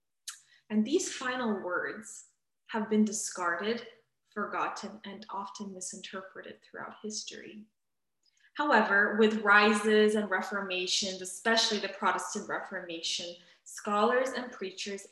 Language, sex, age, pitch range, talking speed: English, female, 20-39, 195-230 Hz, 100 wpm